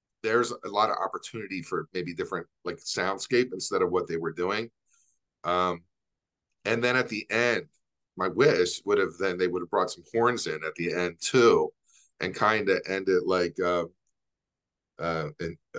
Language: English